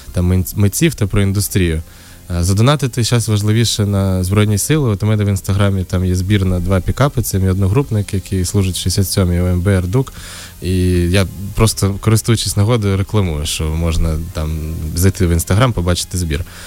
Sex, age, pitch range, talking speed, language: male, 20-39, 90-105 Hz, 160 wpm, Ukrainian